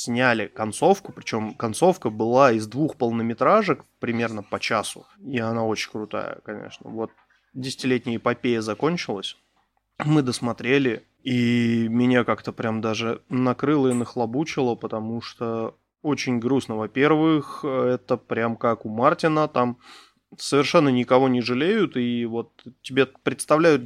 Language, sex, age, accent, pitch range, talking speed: Russian, male, 20-39, native, 115-135 Hz, 125 wpm